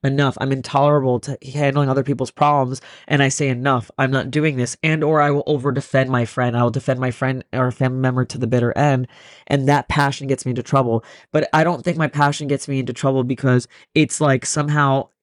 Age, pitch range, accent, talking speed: 20-39, 140-165 Hz, American, 220 wpm